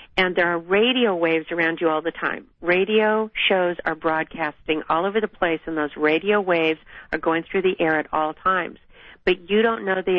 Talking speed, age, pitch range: 205 wpm, 50-69, 170-210 Hz